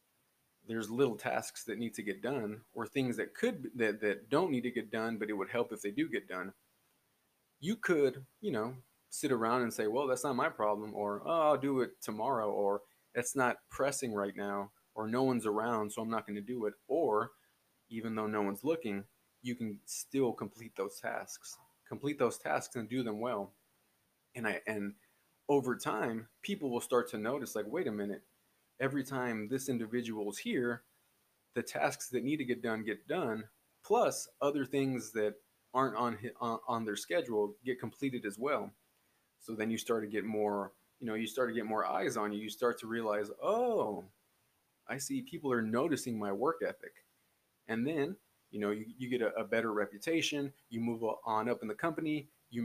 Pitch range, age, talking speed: 105-130 Hz, 30-49, 195 wpm